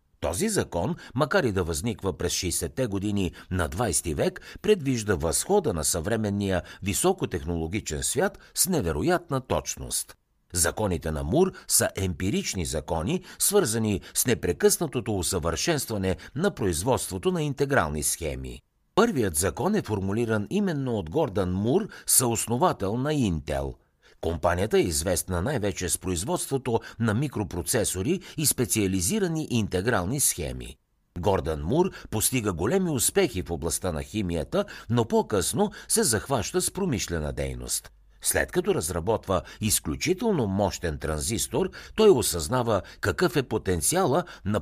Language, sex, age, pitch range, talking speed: Bulgarian, male, 60-79, 85-135 Hz, 115 wpm